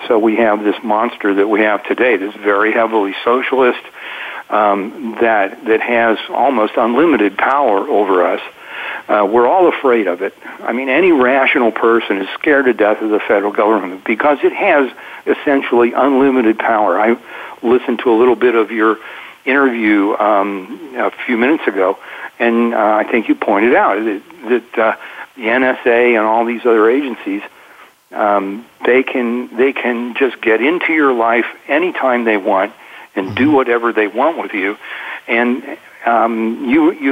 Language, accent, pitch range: English, American, 110-130 Hz